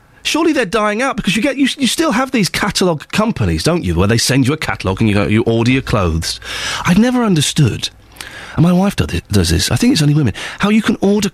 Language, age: English, 40-59